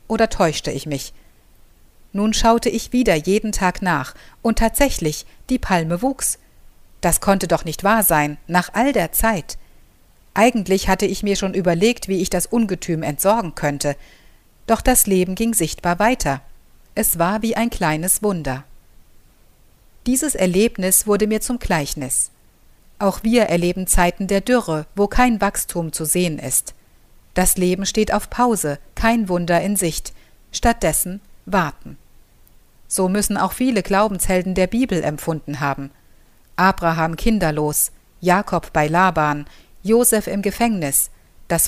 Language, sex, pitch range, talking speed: German, female, 155-220 Hz, 140 wpm